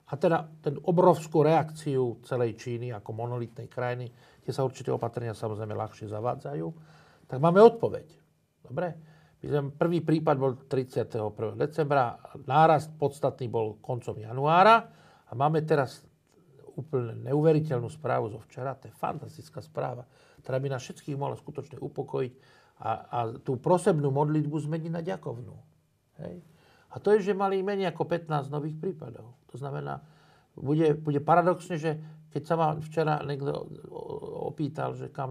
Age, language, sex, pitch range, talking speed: 50-69, Slovak, male, 125-155 Hz, 140 wpm